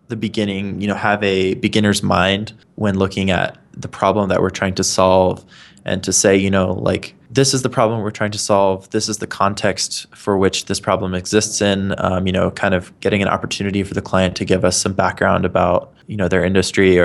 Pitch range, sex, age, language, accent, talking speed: 95-105 Hz, male, 20-39, English, American, 220 wpm